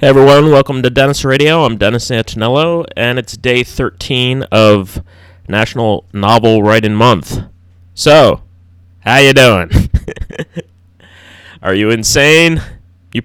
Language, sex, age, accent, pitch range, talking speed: English, male, 30-49, American, 90-115 Hz, 120 wpm